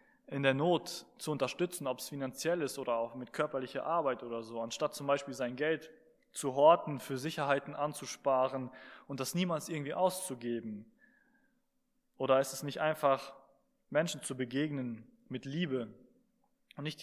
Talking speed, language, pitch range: 150 wpm, German, 135-175 Hz